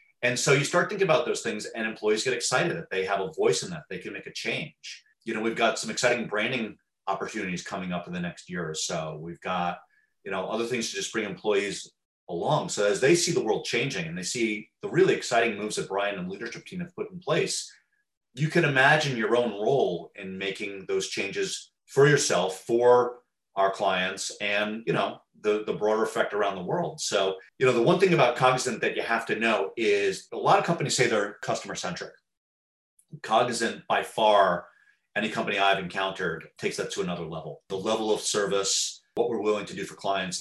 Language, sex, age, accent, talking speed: English, male, 30-49, American, 215 wpm